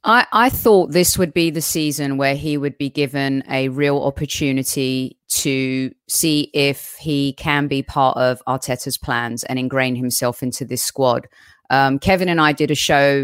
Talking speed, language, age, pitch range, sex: 175 wpm, English, 30-49, 135-160 Hz, female